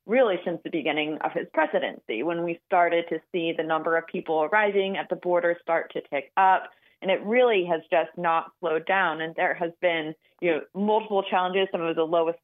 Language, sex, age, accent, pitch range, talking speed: English, female, 30-49, American, 165-190 Hz, 210 wpm